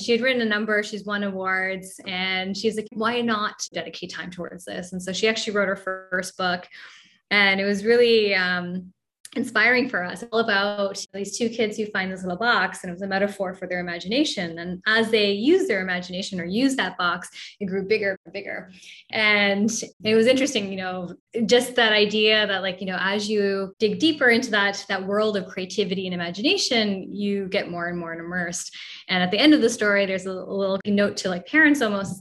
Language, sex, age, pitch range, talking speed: English, female, 10-29, 185-225 Hz, 210 wpm